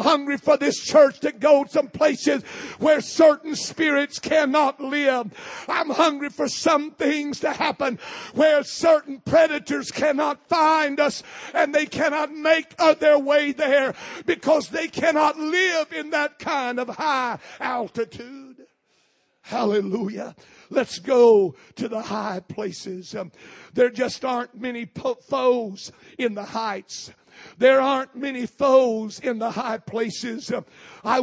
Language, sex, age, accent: English, male, 60-79, American